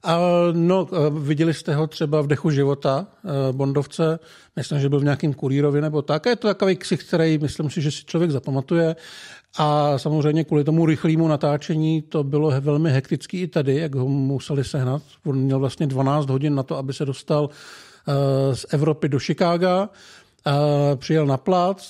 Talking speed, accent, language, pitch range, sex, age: 175 wpm, native, Czech, 140-160 Hz, male, 50-69